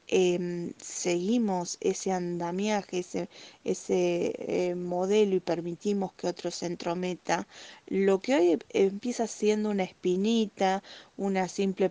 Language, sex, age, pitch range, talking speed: Spanish, female, 20-39, 175-205 Hz, 115 wpm